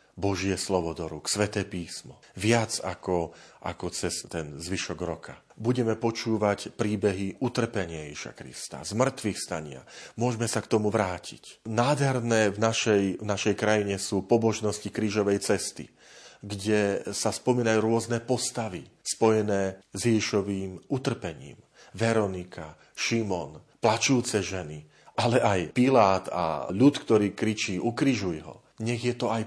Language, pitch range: Slovak, 95-120 Hz